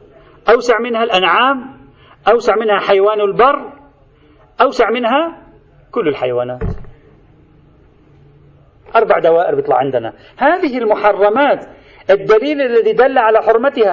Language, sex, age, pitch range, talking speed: Arabic, male, 40-59, 155-220 Hz, 95 wpm